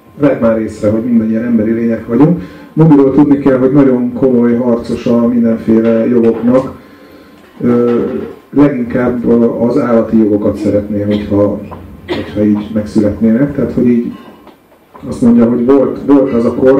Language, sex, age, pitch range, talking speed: Hungarian, male, 30-49, 110-140 Hz, 140 wpm